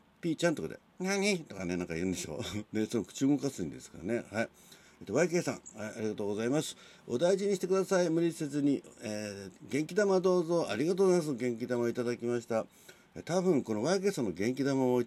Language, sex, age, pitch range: Japanese, male, 60-79, 90-140 Hz